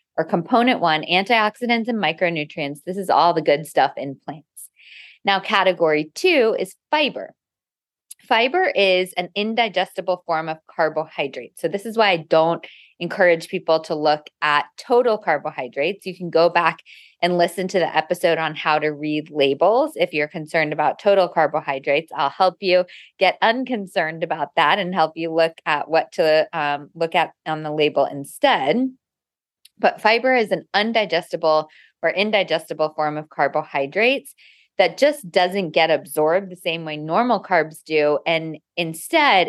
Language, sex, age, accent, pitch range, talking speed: English, female, 20-39, American, 155-210 Hz, 155 wpm